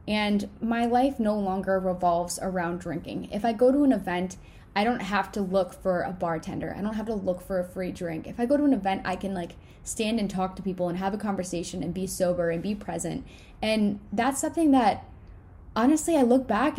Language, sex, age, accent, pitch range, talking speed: English, female, 10-29, American, 190-255 Hz, 225 wpm